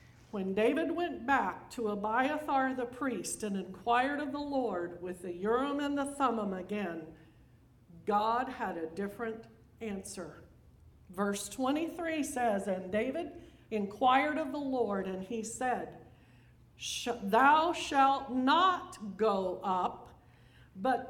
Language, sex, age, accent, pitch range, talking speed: English, female, 50-69, American, 205-305 Hz, 120 wpm